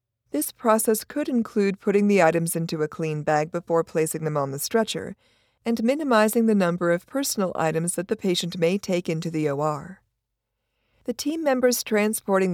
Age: 50-69